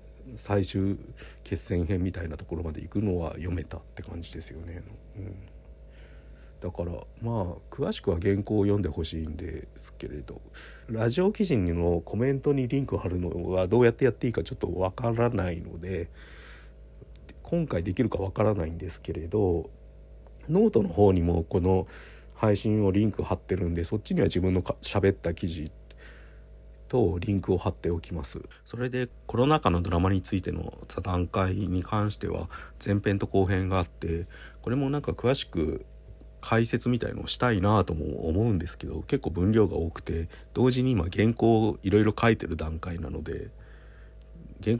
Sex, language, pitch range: male, Japanese, 80-105 Hz